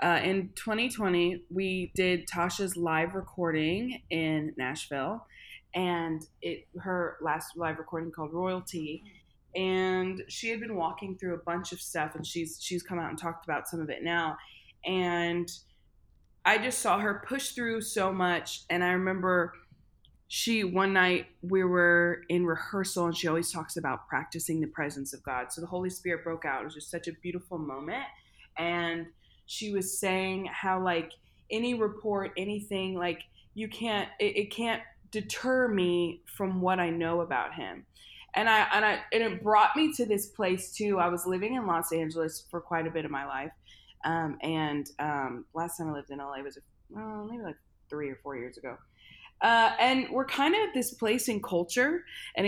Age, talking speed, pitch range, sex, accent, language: 20-39, 180 wpm, 165-210 Hz, female, American, English